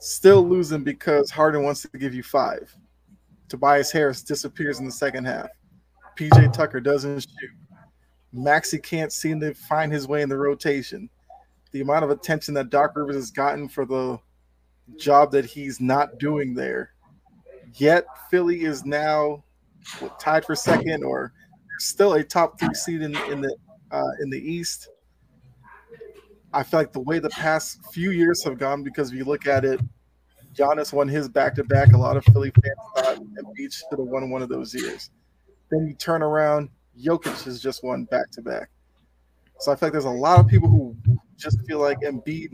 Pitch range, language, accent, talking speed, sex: 130-155 Hz, English, American, 175 wpm, male